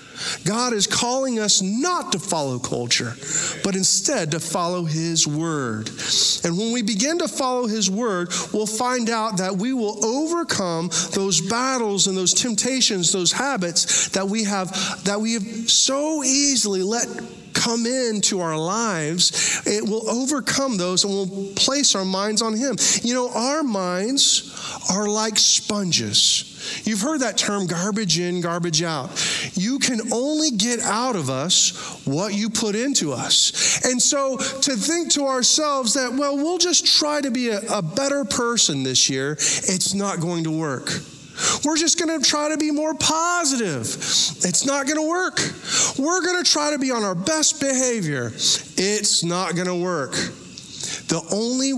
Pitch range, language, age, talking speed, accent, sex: 175-255 Hz, English, 40-59, 165 wpm, American, male